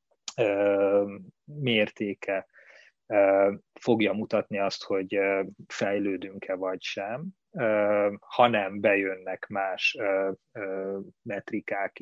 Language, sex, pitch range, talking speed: Hungarian, male, 95-115 Hz, 60 wpm